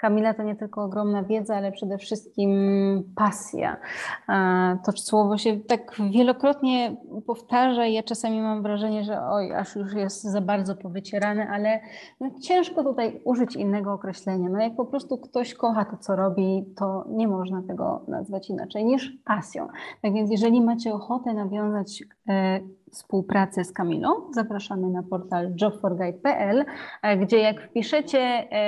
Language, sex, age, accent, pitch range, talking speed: Polish, female, 30-49, native, 195-240 Hz, 145 wpm